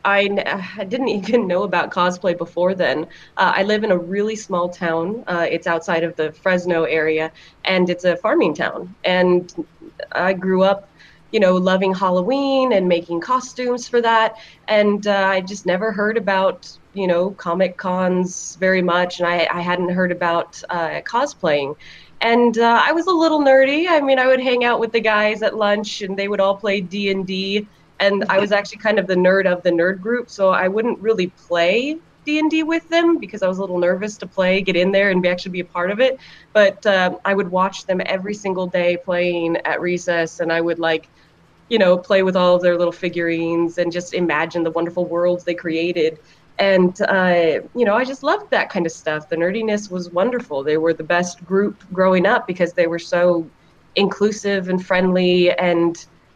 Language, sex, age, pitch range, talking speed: English, female, 20-39, 175-210 Hz, 200 wpm